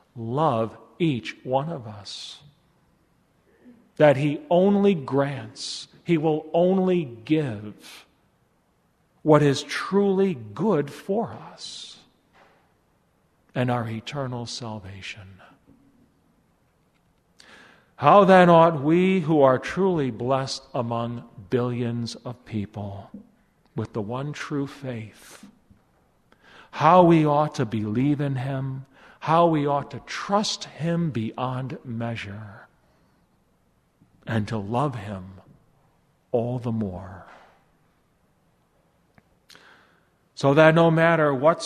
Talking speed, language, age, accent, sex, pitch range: 95 wpm, English, 50-69, American, male, 115-150 Hz